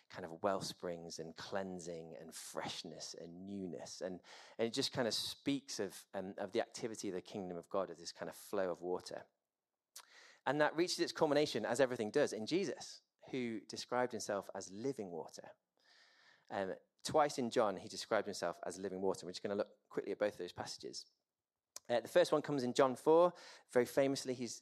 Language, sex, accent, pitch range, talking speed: English, male, British, 95-140 Hz, 195 wpm